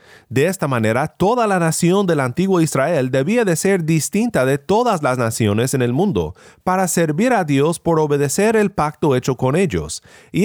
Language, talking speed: Spanish, 185 wpm